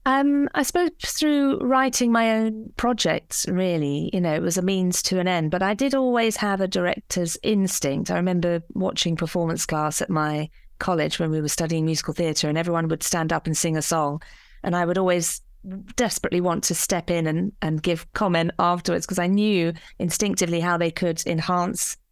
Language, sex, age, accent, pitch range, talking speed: English, female, 30-49, British, 160-190 Hz, 190 wpm